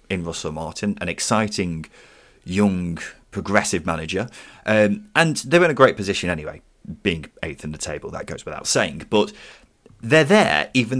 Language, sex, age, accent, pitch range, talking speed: English, male, 30-49, British, 90-135 Hz, 160 wpm